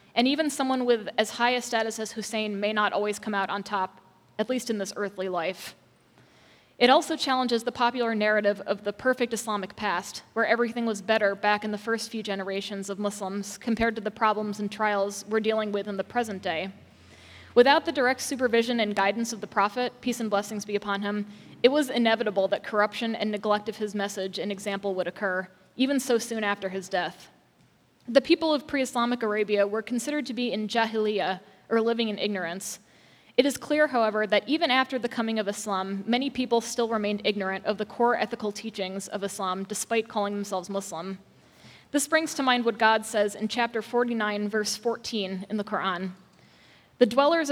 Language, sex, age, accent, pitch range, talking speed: English, female, 20-39, American, 200-240 Hz, 195 wpm